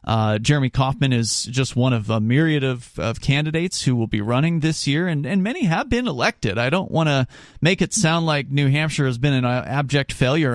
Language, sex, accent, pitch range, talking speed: English, male, American, 125-165 Hz, 220 wpm